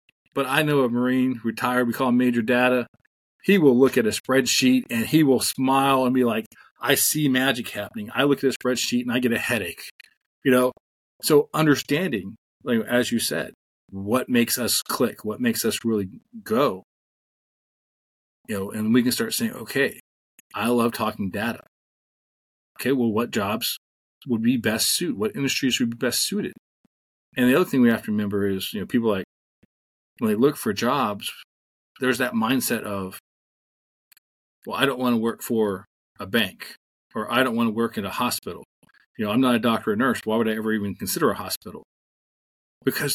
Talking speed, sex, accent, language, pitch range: 190 wpm, male, American, English, 110-135 Hz